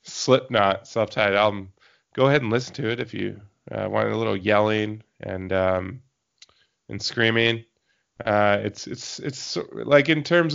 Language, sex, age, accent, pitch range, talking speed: English, male, 20-39, American, 95-115 Hz, 155 wpm